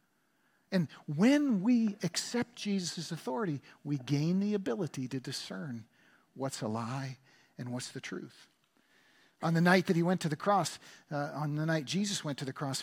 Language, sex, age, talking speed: English, male, 50-69, 175 wpm